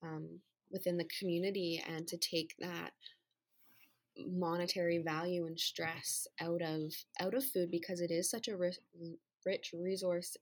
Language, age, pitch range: English, 20-39, 170-190 Hz